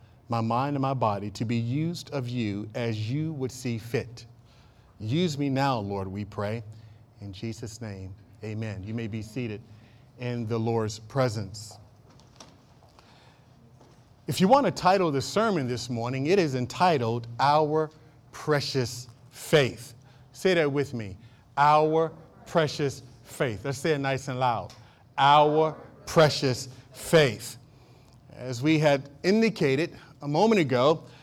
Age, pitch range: 40-59, 120-155 Hz